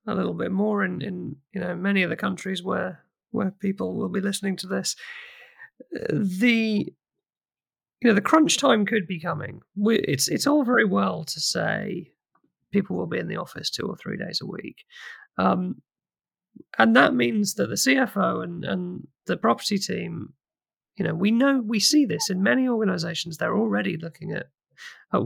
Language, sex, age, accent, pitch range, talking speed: English, male, 30-49, British, 185-235 Hz, 180 wpm